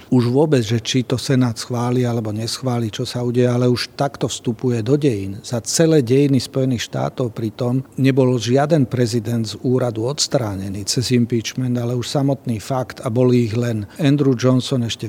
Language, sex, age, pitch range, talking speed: Slovak, male, 40-59, 115-130 Hz, 170 wpm